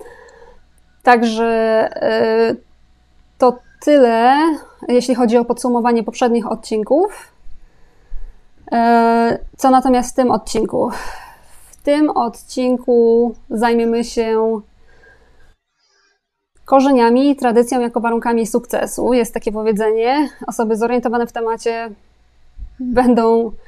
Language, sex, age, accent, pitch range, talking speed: Polish, female, 20-39, native, 225-255 Hz, 80 wpm